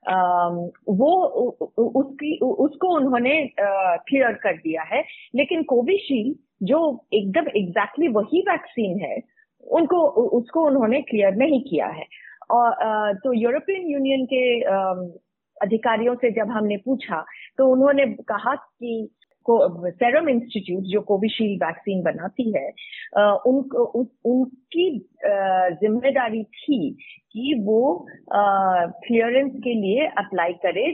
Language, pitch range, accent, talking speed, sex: Hindi, 195-270 Hz, native, 110 wpm, female